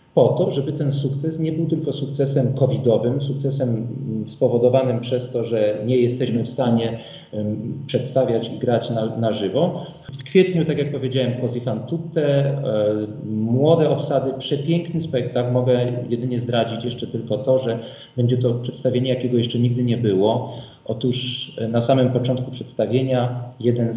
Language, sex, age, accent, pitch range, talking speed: Polish, male, 40-59, native, 115-135 Hz, 140 wpm